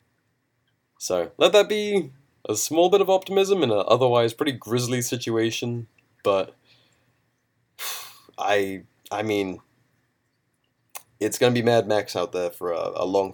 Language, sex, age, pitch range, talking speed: English, male, 20-39, 95-125 Hz, 140 wpm